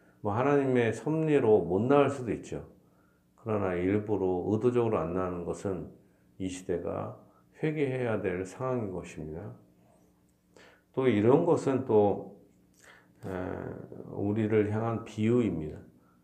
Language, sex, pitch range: Korean, male, 85-120 Hz